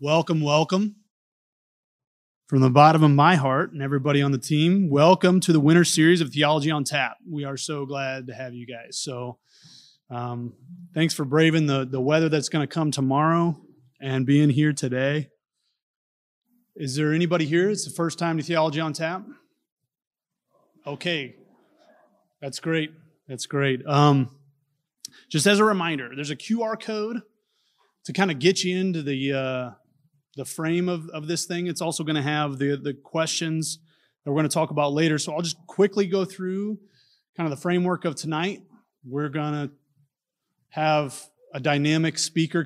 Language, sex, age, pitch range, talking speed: English, male, 30-49, 140-170 Hz, 170 wpm